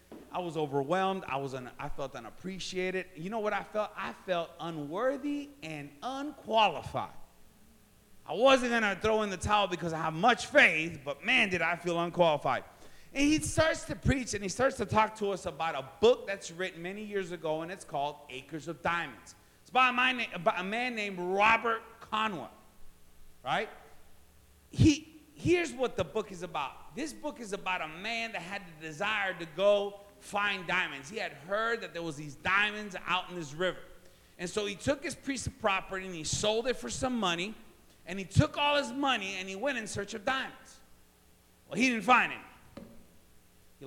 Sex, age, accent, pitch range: male, 30-49, American, 160-230 Hz